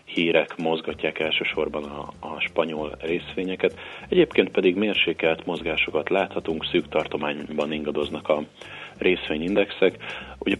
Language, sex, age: Hungarian, male, 40-59